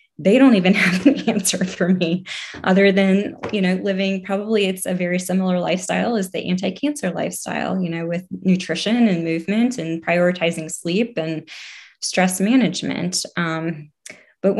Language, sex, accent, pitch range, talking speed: English, female, American, 180-220 Hz, 150 wpm